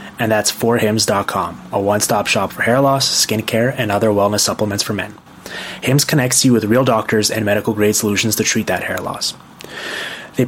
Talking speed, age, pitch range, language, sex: 185 wpm, 20-39, 105-120 Hz, English, male